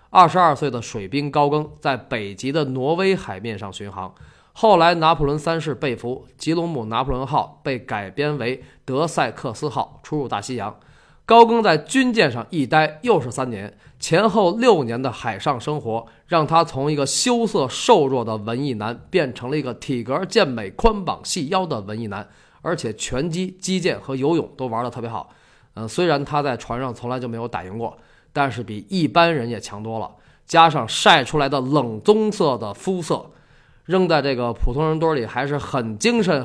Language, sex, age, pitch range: Chinese, male, 20-39, 120-165 Hz